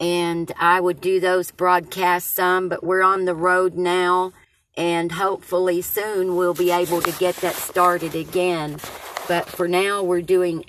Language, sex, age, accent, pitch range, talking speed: English, female, 40-59, American, 170-195 Hz, 165 wpm